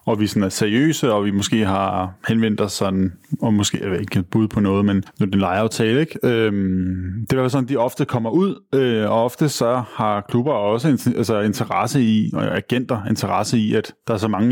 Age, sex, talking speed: 20-39, male, 215 wpm